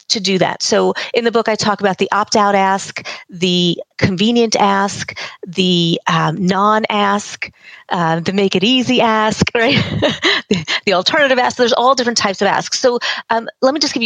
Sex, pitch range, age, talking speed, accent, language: female, 185-240 Hz, 30-49, 175 wpm, American, English